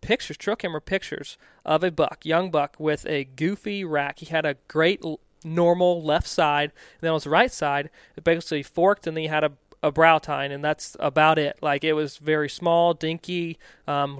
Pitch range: 150-175 Hz